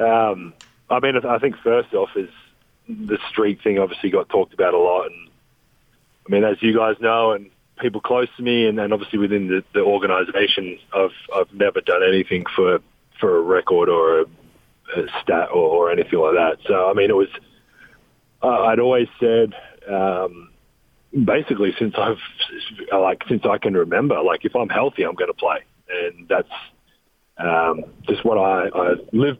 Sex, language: male, English